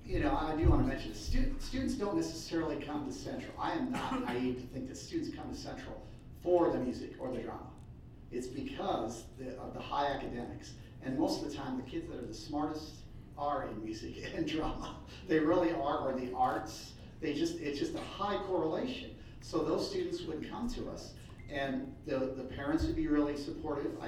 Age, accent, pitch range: 50-69, American, 130-165 Hz